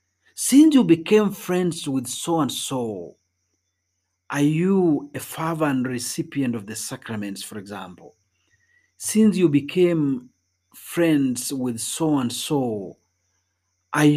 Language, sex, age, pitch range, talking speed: Swahili, male, 50-69, 115-165 Hz, 120 wpm